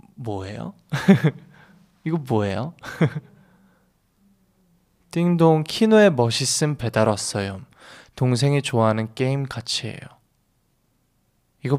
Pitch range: 120-165 Hz